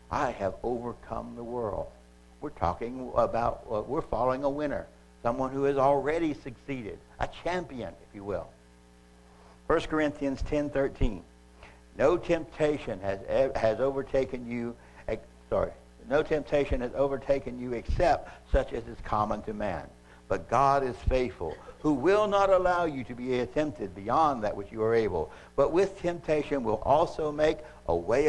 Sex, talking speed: male, 155 wpm